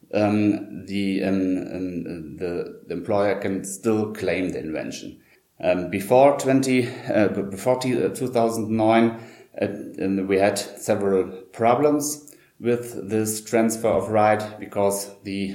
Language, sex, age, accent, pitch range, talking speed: English, male, 30-49, German, 95-115 Hz, 125 wpm